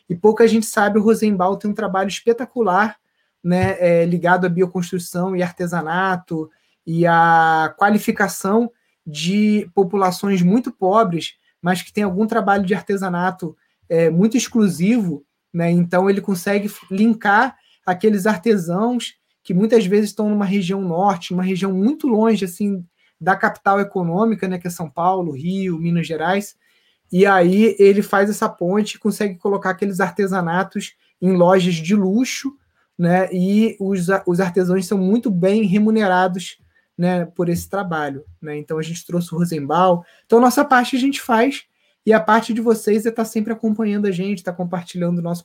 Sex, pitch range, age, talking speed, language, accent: male, 180-210 Hz, 20-39, 160 wpm, Portuguese, Brazilian